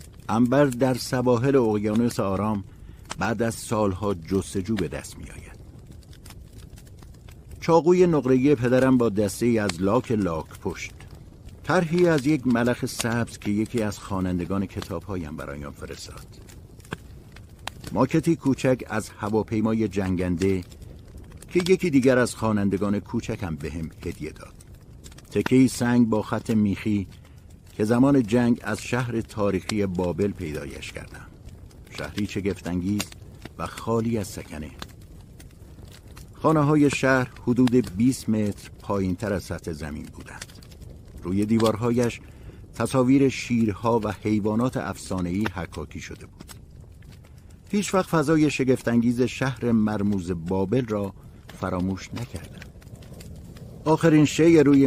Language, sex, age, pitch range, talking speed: Persian, male, 60-79, 95-125 Hz, 115 wpm